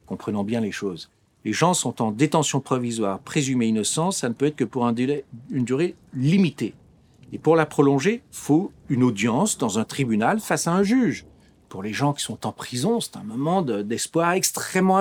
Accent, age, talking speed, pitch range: French, 40-59, 205 wpm, 125-195 Hz